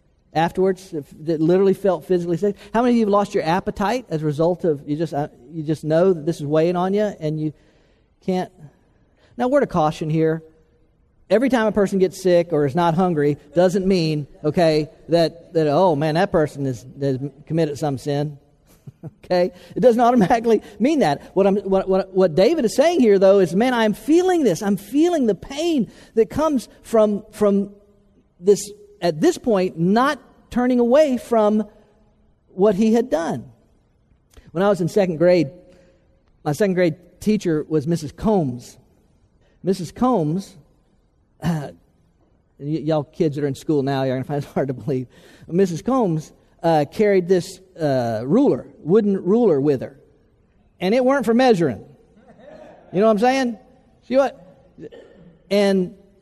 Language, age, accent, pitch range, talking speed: English, 50-69, American, 155-220 Hz, 170 wpm